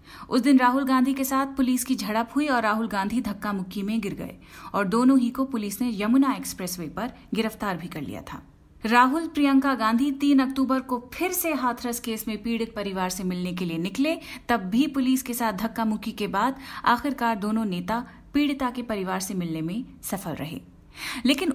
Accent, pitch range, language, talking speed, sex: native, 205-265 Hz, Hindi, 195 wpm, female